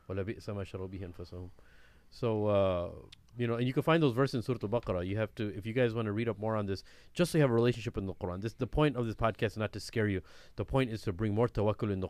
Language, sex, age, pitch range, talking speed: English, male, 30-49, 100-120 Hz, 280 wpm